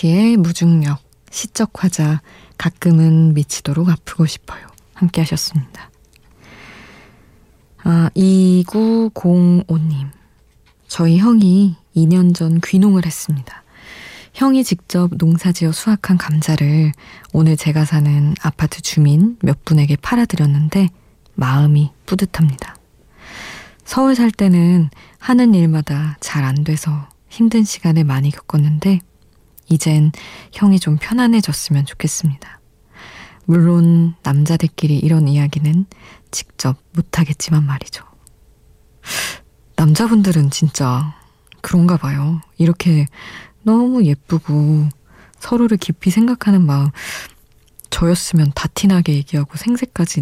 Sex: female